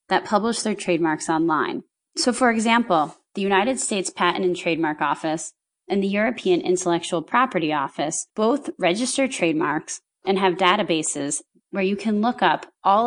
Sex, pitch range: female, 165-220 Hz